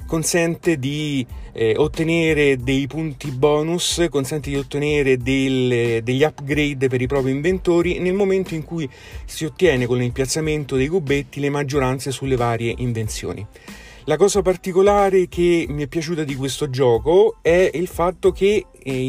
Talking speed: 145 wpm